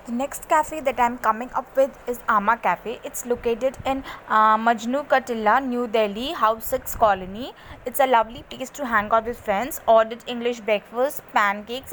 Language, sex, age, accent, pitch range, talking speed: English, female, 20-39, Indian, 230-270 Hz, 180 wpm